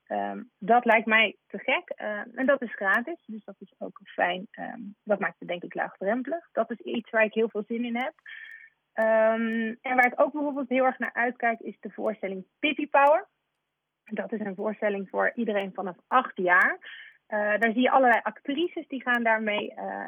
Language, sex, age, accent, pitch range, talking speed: Dutch, female, 30-49, Dutch, 205-255 Hz, 190 wpm